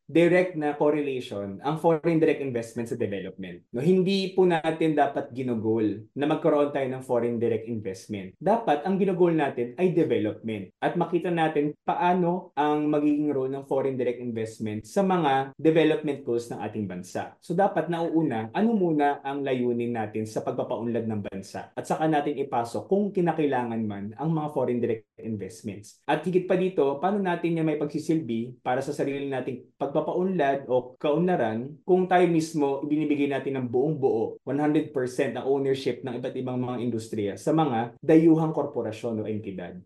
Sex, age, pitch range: male, 20-39, 120-160 Hz